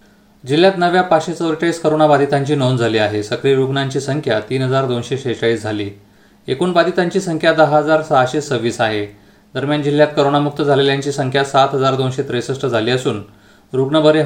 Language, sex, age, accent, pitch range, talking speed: Marathi, male, 30-49, native, 120-155 Hz, 155 wpm